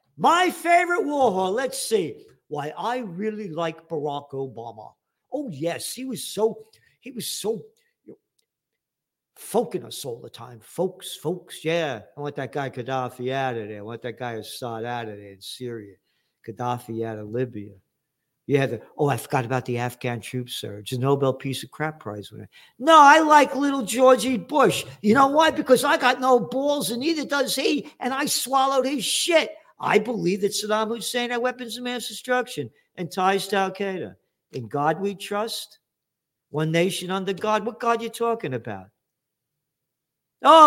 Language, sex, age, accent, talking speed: English, male, 50-69, American, 185 wpm